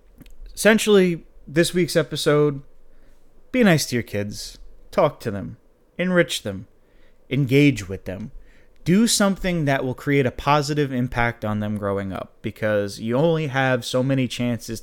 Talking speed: 145 wpm